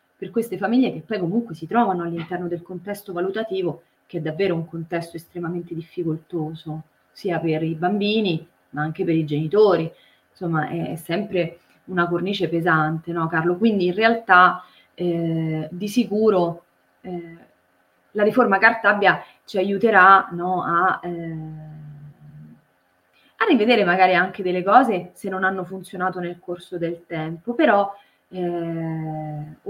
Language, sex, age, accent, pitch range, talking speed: Italian, female, 20-39, native, 165-205 Hz, 135 wpm